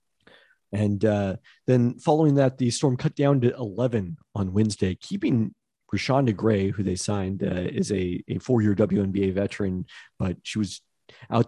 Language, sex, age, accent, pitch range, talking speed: English, male, 40-59, American, 95-115 Hz, 155 wpm